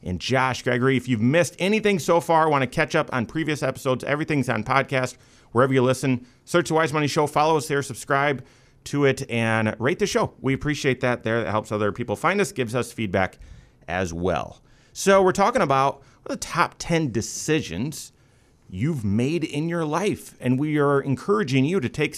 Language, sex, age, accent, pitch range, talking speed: English, male, 40-59, American, 105-145 Hz, 195 wpm